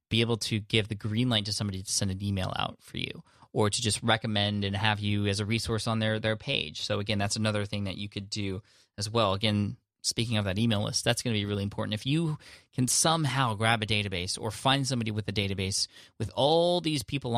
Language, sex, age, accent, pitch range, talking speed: English, male, 20-39, American, 100-120 Hz, 240 wpm